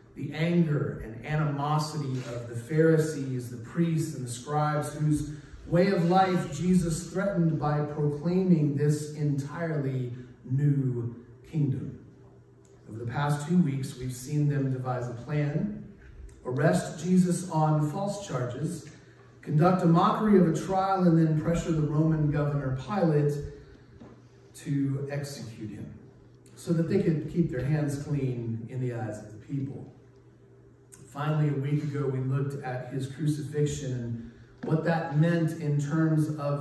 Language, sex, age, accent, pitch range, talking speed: English, male, 40-59, American, 130-160 Hz, 140 wpm